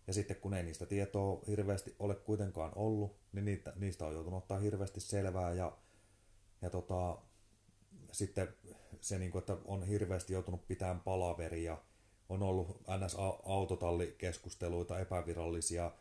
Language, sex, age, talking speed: Finnish, male, 30-49, 125 wpm